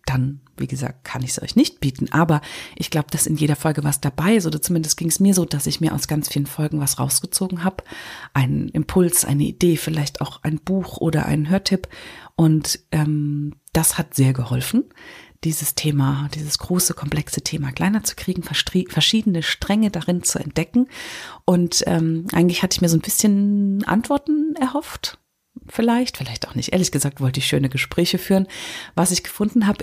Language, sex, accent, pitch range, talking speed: German, female, German, 150-190 Hz, 185 wpm